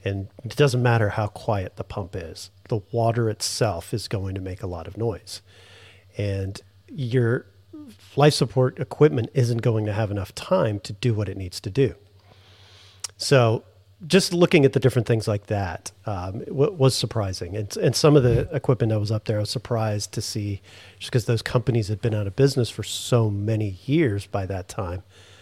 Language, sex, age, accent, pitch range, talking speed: English, male, 40-59, American, 100-125 Hz, 195 wpm